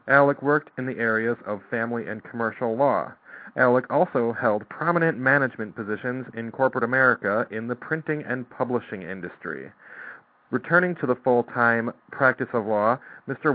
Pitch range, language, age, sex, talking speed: 115-135 Hz, English, 40-59, male, 145 wpm